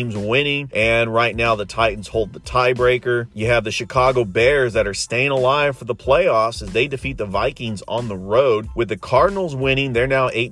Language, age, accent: English, 30-49, American